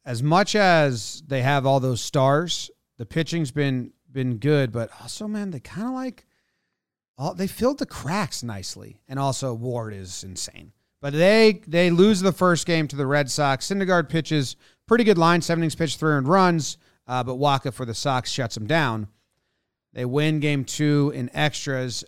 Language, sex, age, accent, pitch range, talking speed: English, male, 30-49, American, 110-145 Hz, 180 wpm